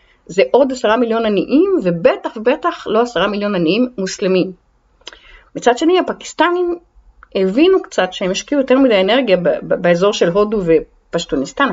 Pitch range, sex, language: 185-315 Hz, female, Hebrew